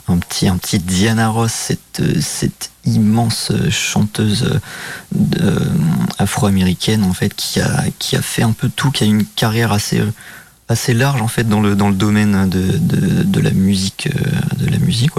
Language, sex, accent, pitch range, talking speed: French, male, French, 95-150 Hz, 170 wpm